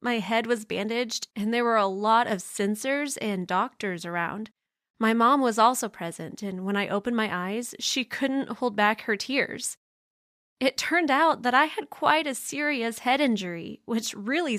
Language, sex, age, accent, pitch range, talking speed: English, female, 20-39, American, 210-270 Hz, 180 wpm